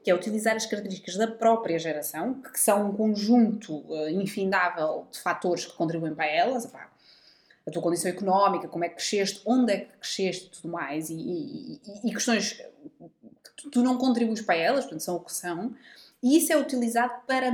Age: 20-39